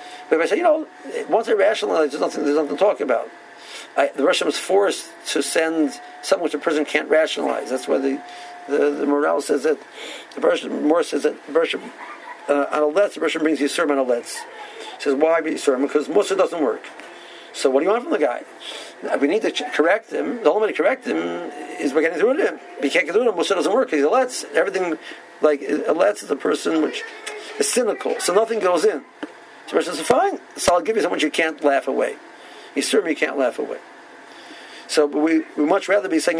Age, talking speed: 50-69, 235 wpm